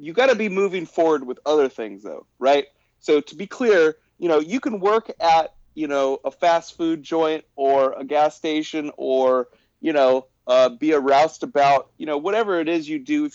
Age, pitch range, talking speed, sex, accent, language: 30-49, 135-185 Hz, 205 wpm, male, American, English